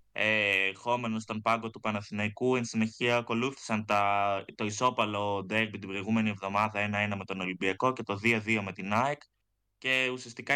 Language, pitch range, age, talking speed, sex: Greek, 100-120 Hz, 20-39, 155 wpm, male